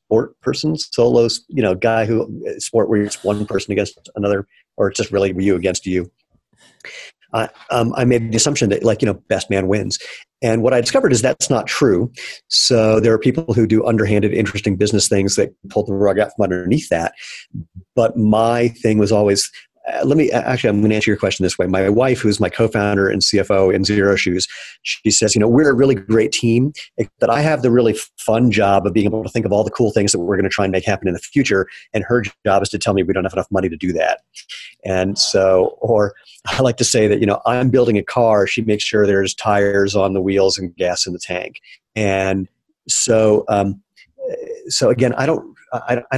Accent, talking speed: American, 230 wpm